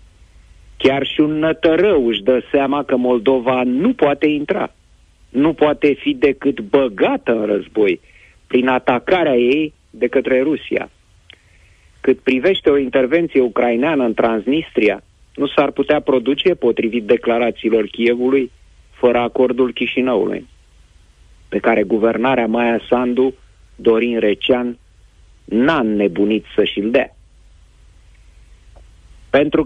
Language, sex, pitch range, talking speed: Romanian, male, 105-140 Hz, 110 wpm